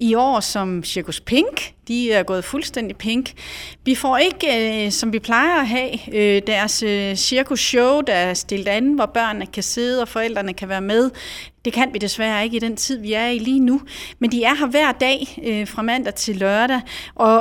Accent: native